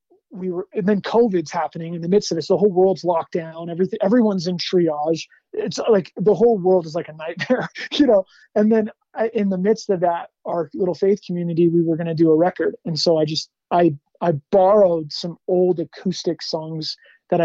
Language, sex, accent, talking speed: English, male, American, 210 wpm